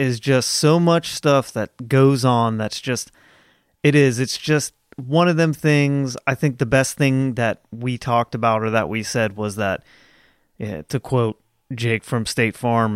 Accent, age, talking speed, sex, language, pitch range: American, 30-49, 185 wpm, male, English, 115-135 Hz